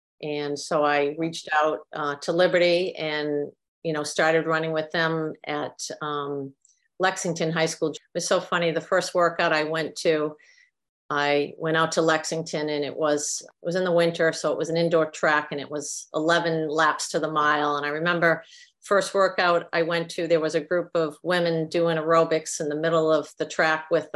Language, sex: English, female